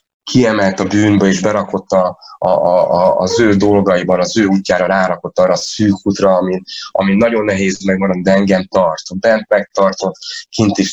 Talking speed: 165 wpm